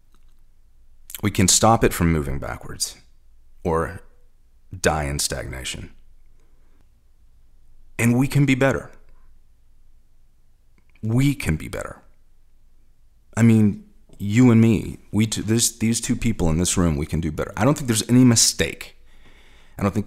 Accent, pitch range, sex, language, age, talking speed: American, 80-110 Hz, male, English, 30-49, 140 wpm